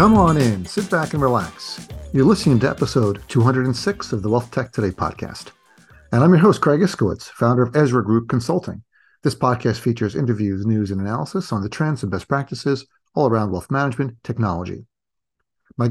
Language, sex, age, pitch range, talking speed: English, male, 50-69, 105-140 Hz, 180 wpm